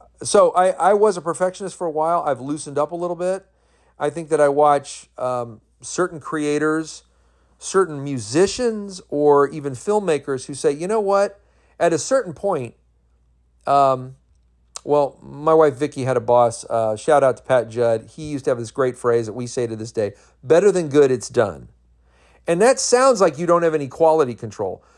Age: 40-59